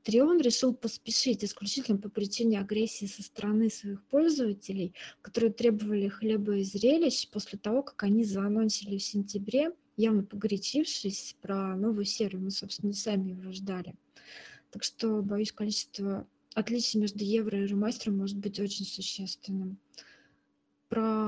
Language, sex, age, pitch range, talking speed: Russian, female, 20-39, 200-230 Hz, 135 wpm